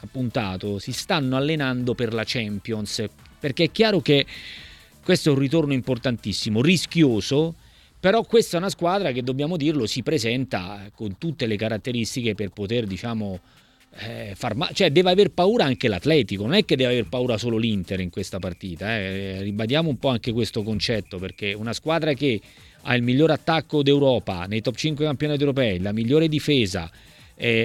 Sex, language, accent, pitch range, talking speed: male, Italian, native, 115-160 Hz, 170 wpm